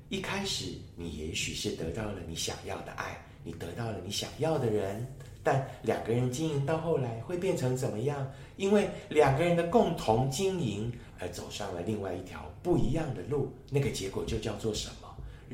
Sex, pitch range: male, 100-145 Hz